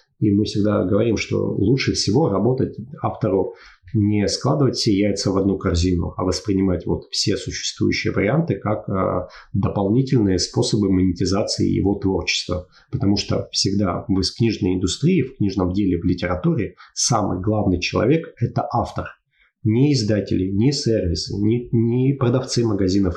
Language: Russian